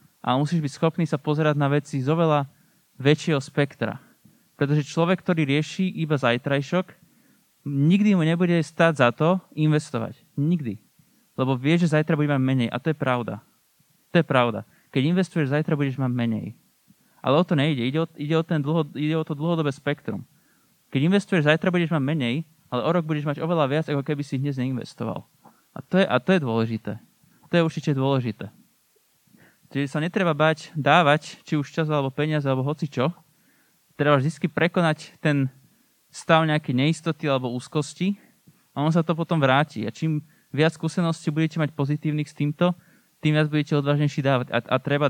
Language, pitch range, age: Slovak, 135-160 Hz, 20-39